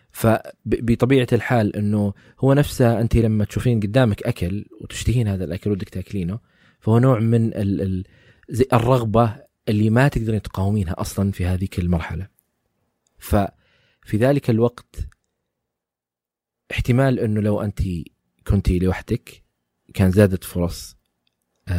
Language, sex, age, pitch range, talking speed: Arabic, male, 20-39, 90-115 Hz, 115 wpm